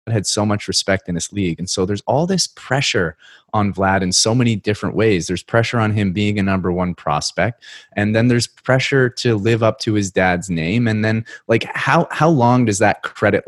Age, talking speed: 30-49, 220 wpm